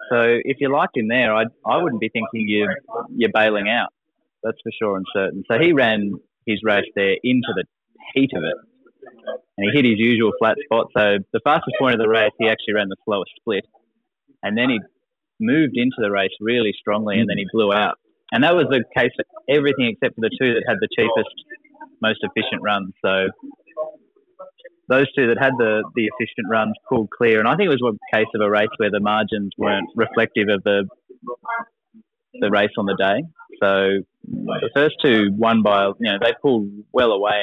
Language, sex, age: English, male, 20-39